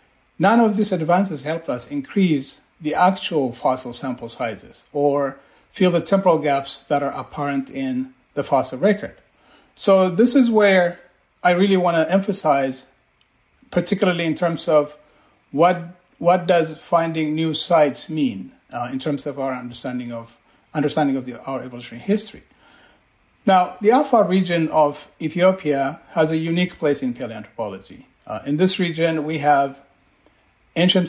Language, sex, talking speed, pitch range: English, male, 145 wpm, 135-180 Hz